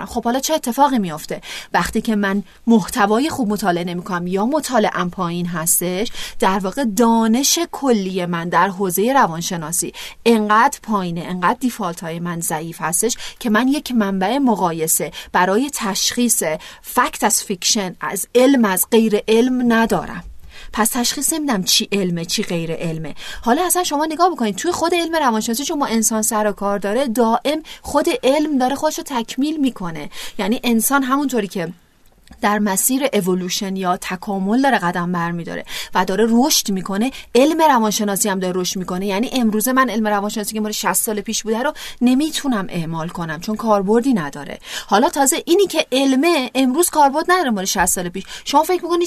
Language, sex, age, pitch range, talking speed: Persian, female, 30-49, 185-260 Hz, 165 wpm